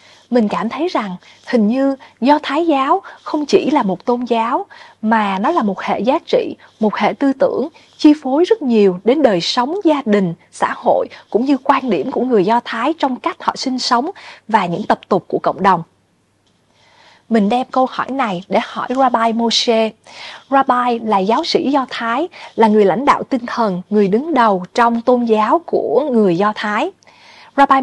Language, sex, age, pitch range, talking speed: Vietnamese, female, 20-39, 210-285 Hz, 190 wpm